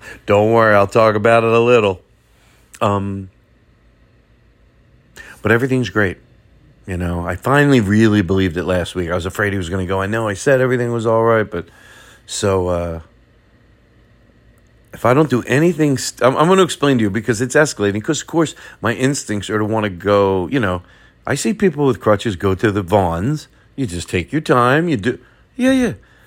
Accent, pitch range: American, 100-130 Hz